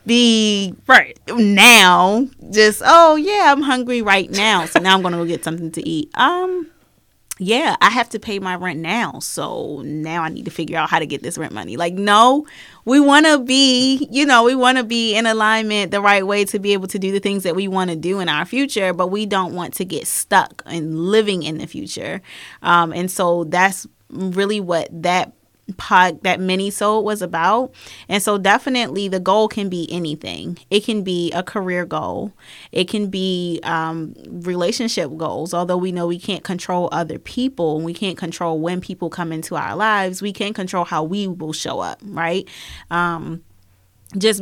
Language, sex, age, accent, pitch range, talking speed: English, female, 20-39, American, 170-210 Hz, 195 wpm